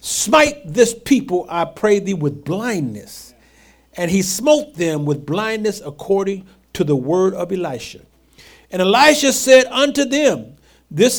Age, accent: 50-69, American